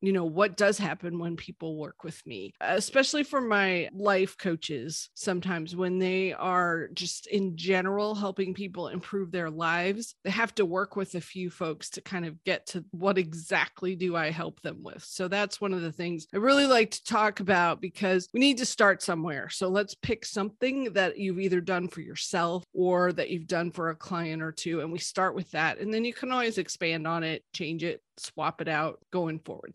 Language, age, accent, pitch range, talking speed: English, 30-49, American, 175-215 Hz, 210 wpm